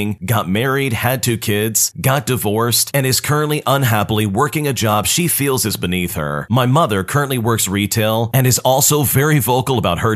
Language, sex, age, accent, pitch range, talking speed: English, male, 30-49, American, 100-135 Hz, 185 wpm